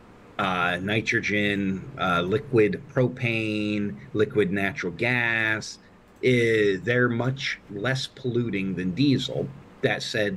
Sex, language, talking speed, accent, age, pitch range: male, English, 95 wpm, American, 40-59, 95-125 Hz